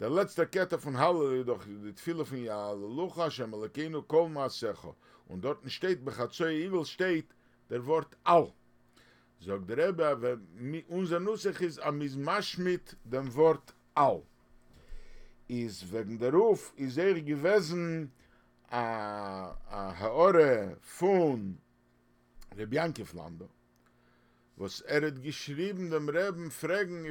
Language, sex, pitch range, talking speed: English, male, 110-165 Hz, 115 wpm